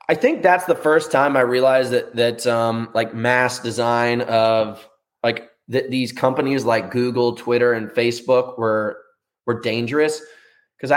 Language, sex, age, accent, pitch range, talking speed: English, male, 20-39, American, 115-145 Hz, 155 wpm